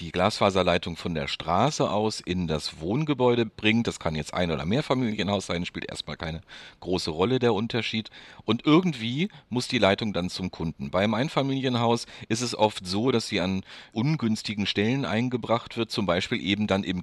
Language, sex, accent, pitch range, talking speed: German, male, German, 90-110 Hz, 180 wpm